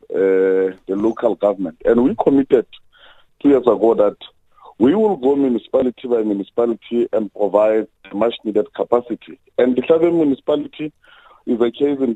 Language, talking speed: English, 150 wpm